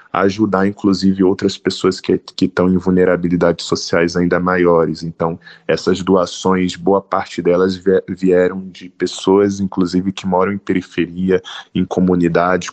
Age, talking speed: 20-39, 130 wpm